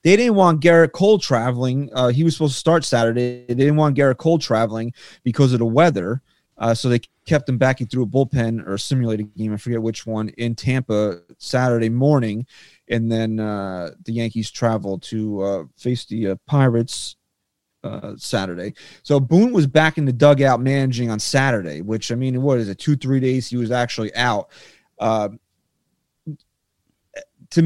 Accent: American